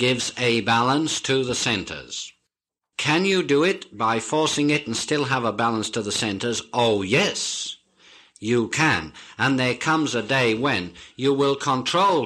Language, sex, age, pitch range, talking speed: English, male, 50-69, 110-140 Hz, 165 wpm